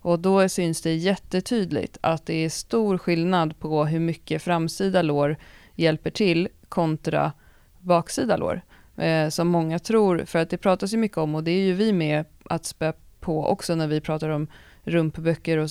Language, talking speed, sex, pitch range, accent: Swedish, 180 wpm, female, 160-185 Hz, native